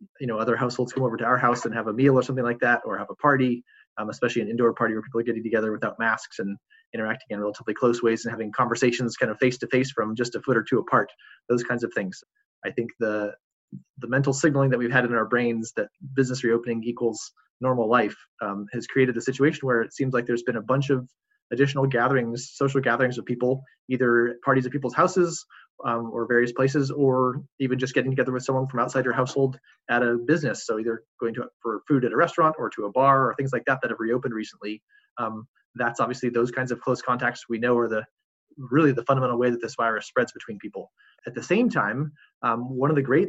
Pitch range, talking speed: 120-140 Hz, 235 wpm